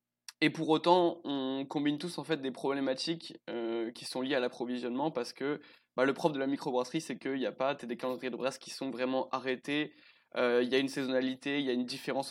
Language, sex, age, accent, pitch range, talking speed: French, male, 20-39, French, 120-140 Hz, 235 wpm